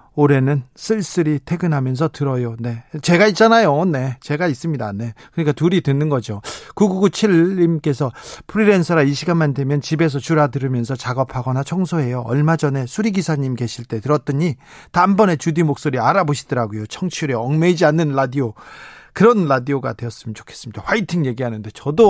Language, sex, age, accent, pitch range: Korean, male, 40-59, native, 135-180 Hz